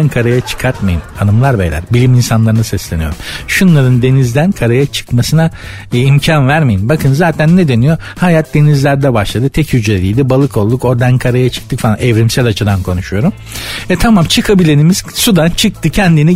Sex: male